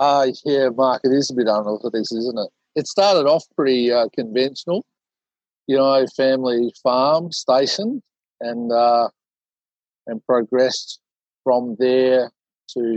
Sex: male